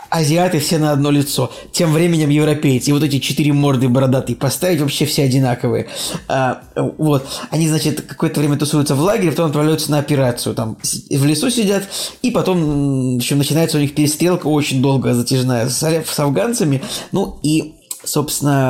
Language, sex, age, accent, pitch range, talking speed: Russian, male, 20-39, native, 130-150 Hz, 165 wpm